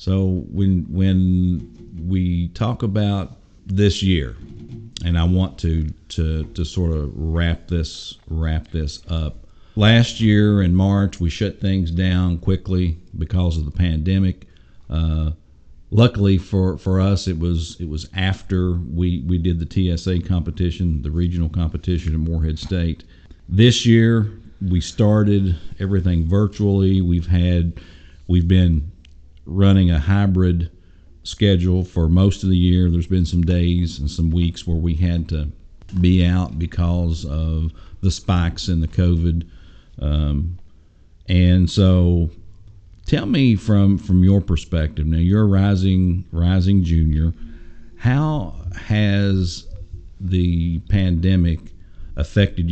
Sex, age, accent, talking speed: male, 50-69, American, 130 wpm